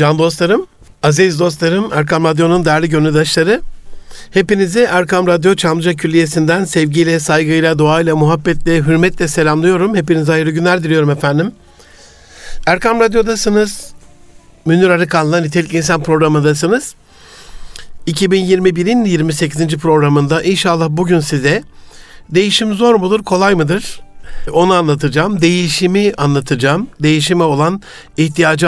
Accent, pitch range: native, 155-185 Hz